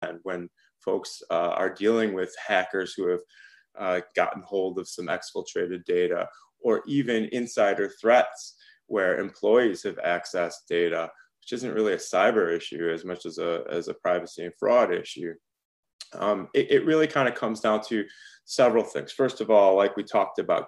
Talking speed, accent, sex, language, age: 170 wpm, American, male, English, 20-39